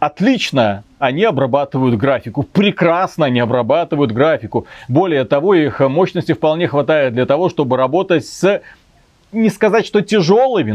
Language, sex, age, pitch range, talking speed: Russian, male, 30-49, 135-175 Hz, 130 wpm